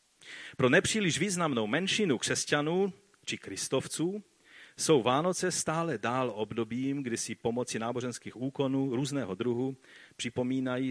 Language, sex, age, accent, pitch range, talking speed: Czech, male, 40-59, native, 110-140 Hz, 110 wpm